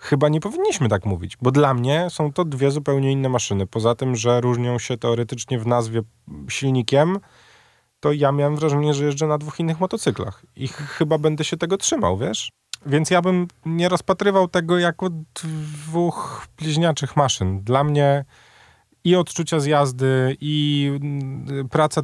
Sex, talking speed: male, 160 wpm